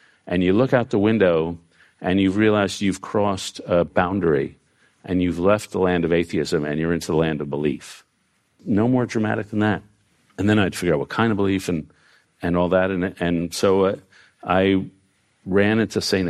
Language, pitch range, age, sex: English, 85-105 Hz, 50-69, male